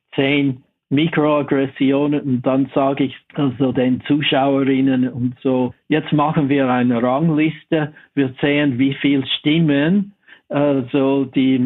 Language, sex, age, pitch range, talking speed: German, male, 60-79, 125-145 Hz, 110 wpm